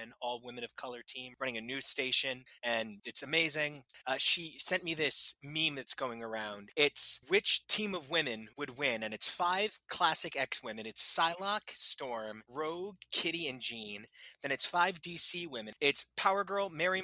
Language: English